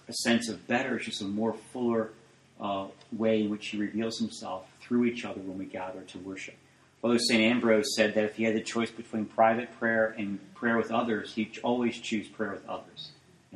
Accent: American